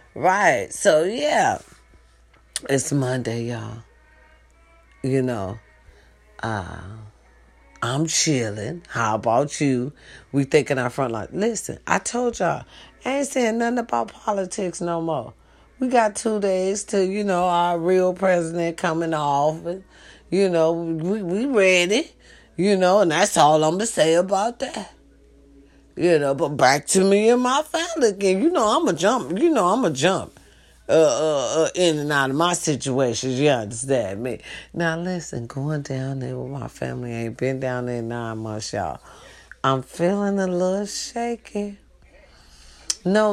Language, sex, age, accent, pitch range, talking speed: English, female, 40-59, American, 130-205 Hz, 155 wpm